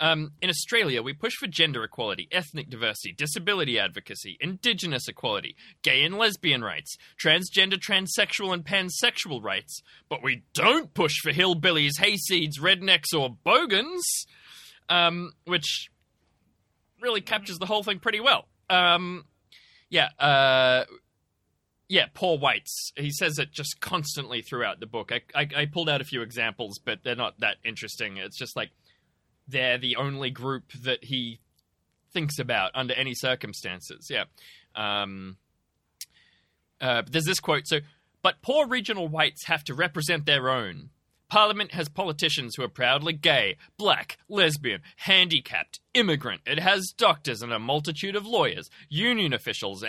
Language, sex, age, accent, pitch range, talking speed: English, male, 20-39, Australian, 135-190 Hz, 145 wpm